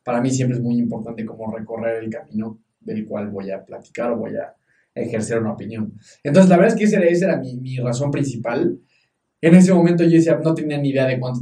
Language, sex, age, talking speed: Spanish, male, 20-39, 235 wpm